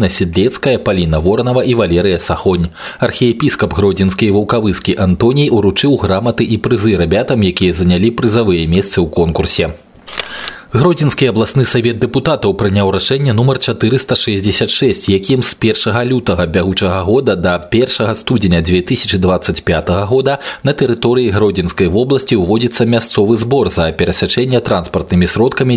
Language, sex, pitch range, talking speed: Russian, male, 90-120 Hz, 120 wpm